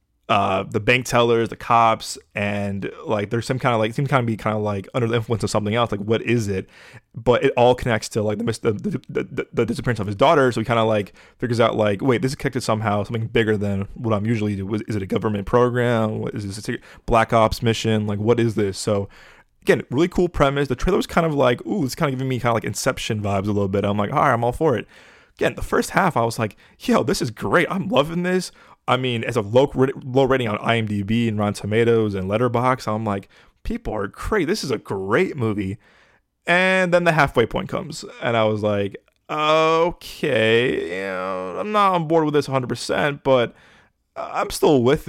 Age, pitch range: 20-39, 105-135 Hz